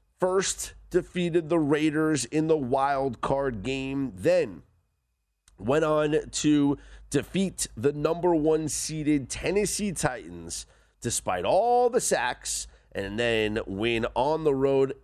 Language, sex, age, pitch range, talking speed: English, male, 30-49, 105-155 Hz, 120 wpm